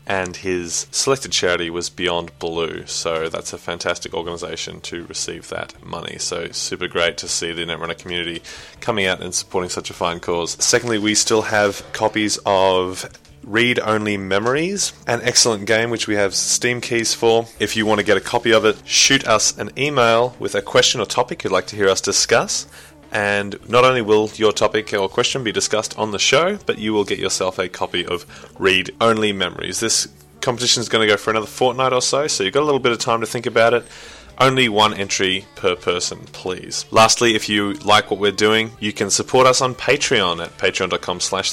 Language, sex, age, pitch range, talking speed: English, male, 20-39, 95-115 Hz, 205 wpm